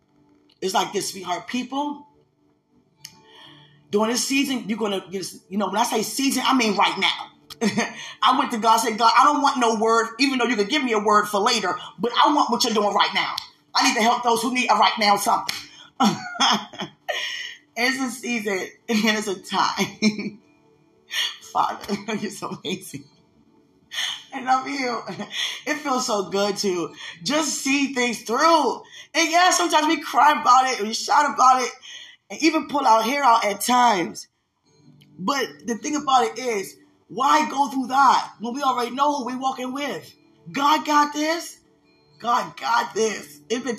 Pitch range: 205-275 Hz